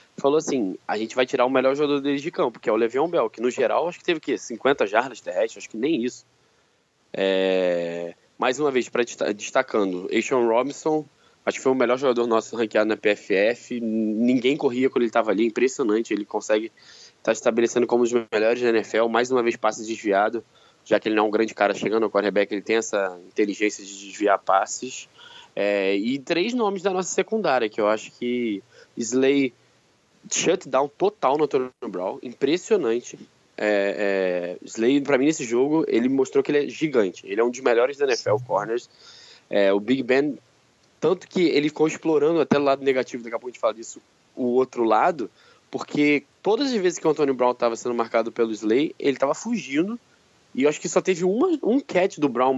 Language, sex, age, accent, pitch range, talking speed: Portuguese, male, 20-39, Brazilian, 110-155 Hz, 200 wpm